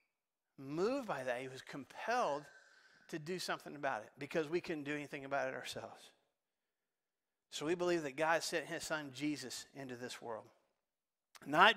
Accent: American